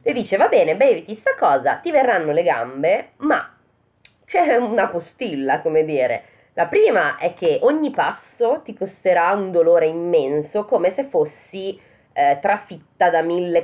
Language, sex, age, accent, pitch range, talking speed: Italian, female, 20-39, native, 155-255 Hz, 155 wpm